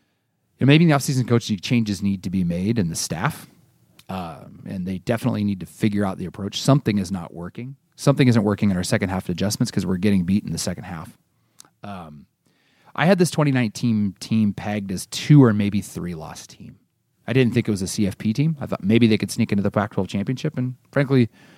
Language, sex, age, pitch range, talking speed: English, male, 30-49, 100-125 Hz, 220 wpm